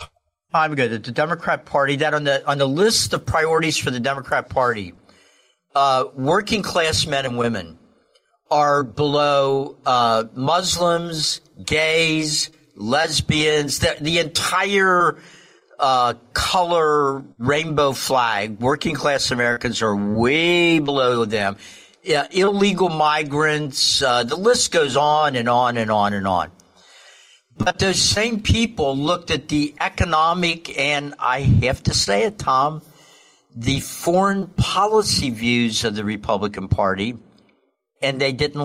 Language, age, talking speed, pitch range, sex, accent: English, 50-69, 130 wpm, 130-160 Hz, male, American